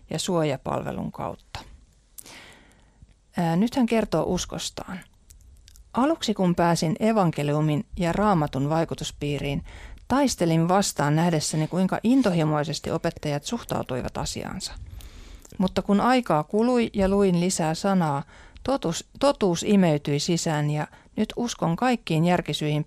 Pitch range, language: 145-190 Hz, Finnish